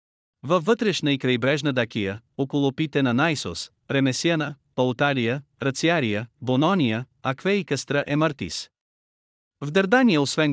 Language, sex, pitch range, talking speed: Bulgarian, male, 125-160 Hz, 120 wpm